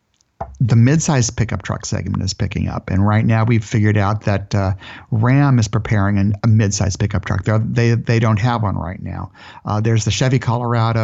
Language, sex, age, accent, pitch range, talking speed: English, male, 50-69, American, 105-120 Hz, 200 wpm